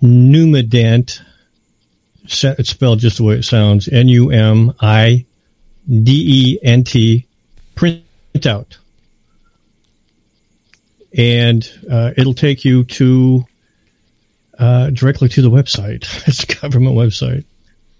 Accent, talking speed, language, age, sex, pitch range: American, 85 wpm, English, 50-69, male, 110-130 Hz